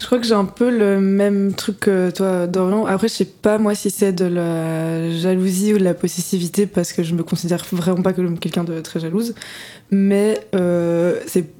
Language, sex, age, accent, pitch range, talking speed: English, female, 20-39, French, 180-200 Hz, 210 wpm